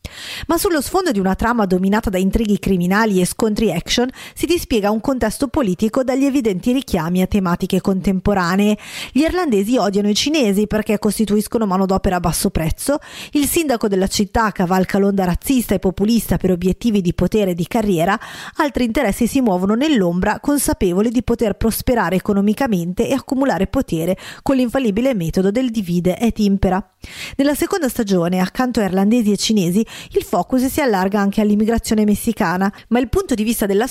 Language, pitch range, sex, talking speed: Italian, 190-245 Hz, female, 165 wpm